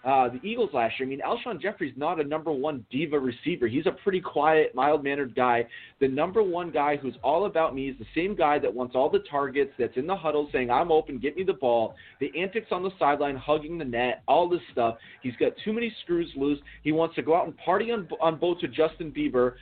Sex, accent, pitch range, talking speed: male, American, 125-165 Hz, 240 wpm